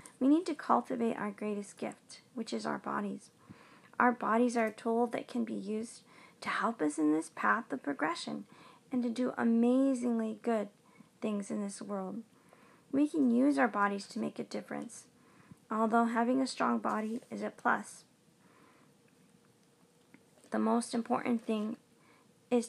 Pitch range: 210-245 Hz